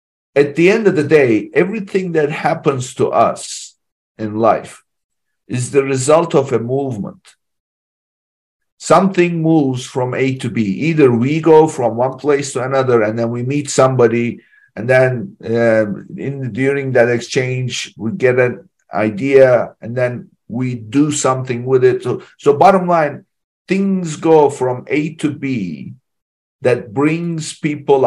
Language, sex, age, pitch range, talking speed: English, male, 50-69, 125-160 Hz, 145 wpm